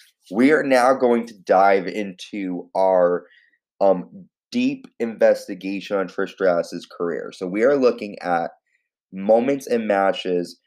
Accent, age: American, 20-39